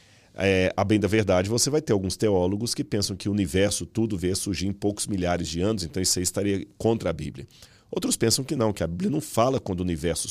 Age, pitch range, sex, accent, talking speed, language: 40-59, 90-115 Hz, male, Brazilian, 240 wpm, Portuguese